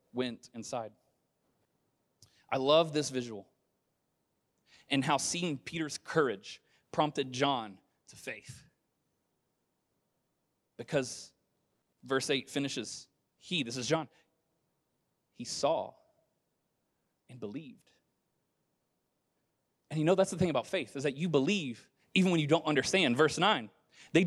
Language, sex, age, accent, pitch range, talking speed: English, male, 30-49, American, 145-215 Hz, 115 wpm